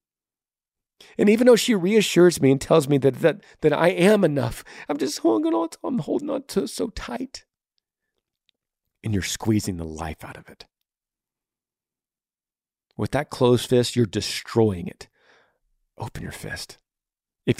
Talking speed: 155 wpm